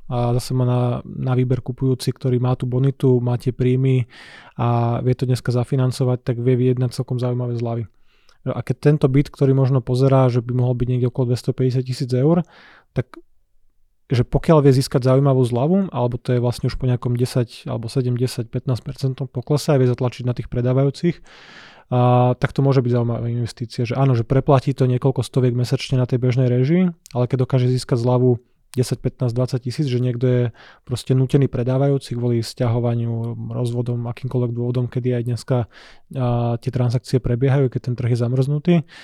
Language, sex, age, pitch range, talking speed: Slovak, male, 20-39, 125-135 Hz, 180 wpm